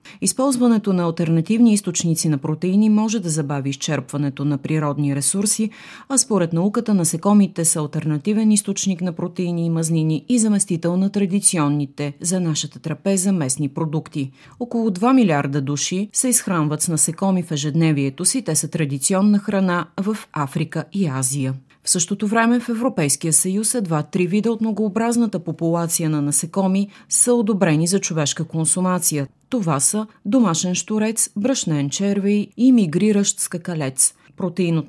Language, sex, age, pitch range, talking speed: Bulgarian, female, 30-49, 155-210 Hz, 140 wpm